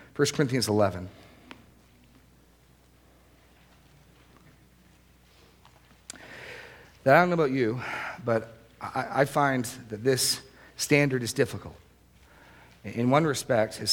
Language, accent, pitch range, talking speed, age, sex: English, American, 105-130 Hz, 95 wpm, 40-59, male